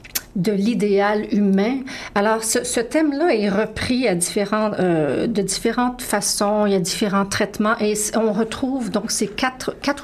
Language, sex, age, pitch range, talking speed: French, female, 40-59, 190-230 Hz, 160 wpm